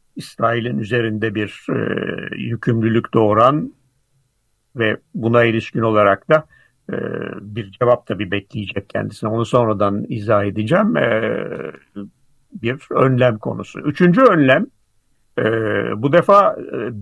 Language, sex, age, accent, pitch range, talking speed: Turkish, male, 60-79, native, 110-160 Hz, 110 wpm